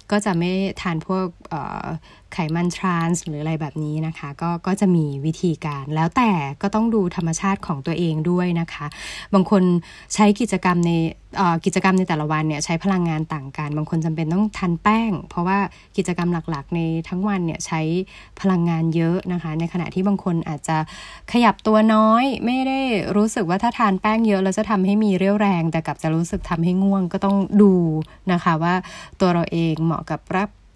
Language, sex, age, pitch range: Thai, female, 20-39, 165-200 Hz